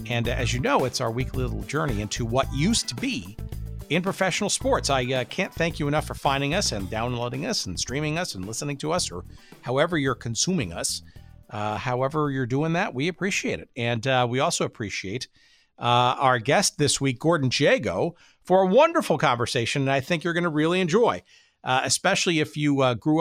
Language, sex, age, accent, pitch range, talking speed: English, male, 50-69, American, 120-170 Hz, 205 wpm